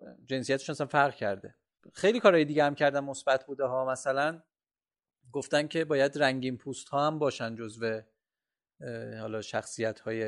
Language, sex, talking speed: Persian, male, 150 wpm